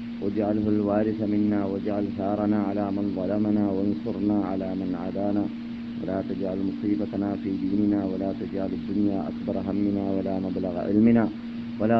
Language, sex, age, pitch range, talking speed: Malayalam, male, 30-49, 100-110 Hz, 130 wpm